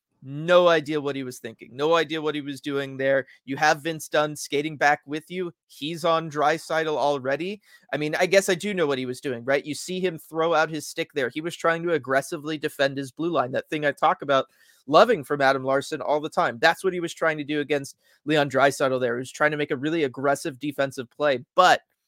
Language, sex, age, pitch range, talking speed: English, male, 30-49, 140-165 Hz, 240 wpm